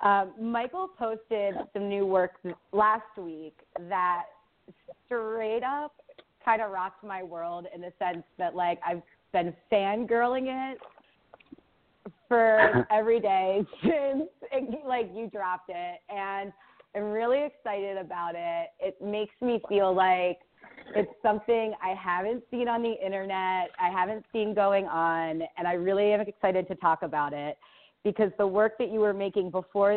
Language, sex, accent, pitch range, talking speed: English, female, American, 185-225 Hz, 150 wpm